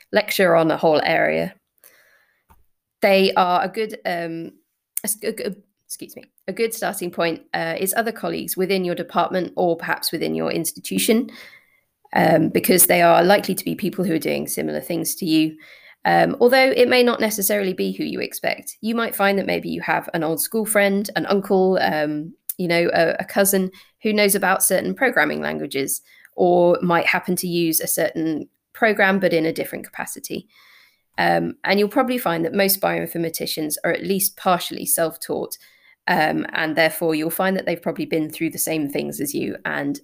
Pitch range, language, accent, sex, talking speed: 160-205 Hz, English, British, female, 180 wpm